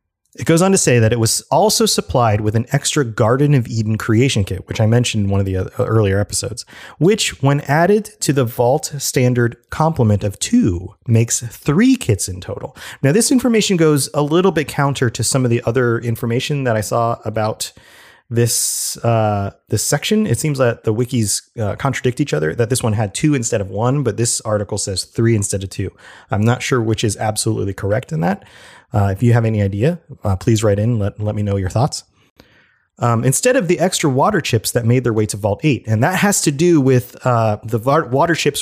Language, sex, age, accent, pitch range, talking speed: English, male, 30-49, American, 105-140 Hz, 215 wpm